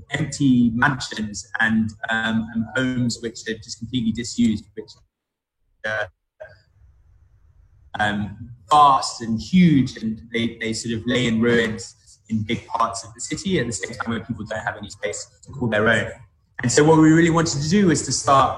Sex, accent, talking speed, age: male, British, 185 wpm, 20-39